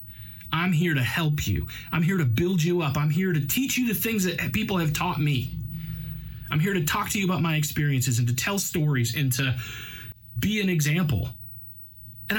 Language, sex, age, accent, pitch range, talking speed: English, male, 30-49, American, 115-170 Hz, 205 wpm